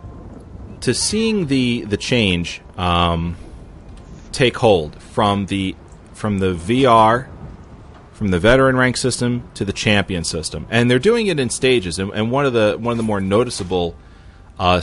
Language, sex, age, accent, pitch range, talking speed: English, male, 30-49, American, 85-115 Hz, 160 wpm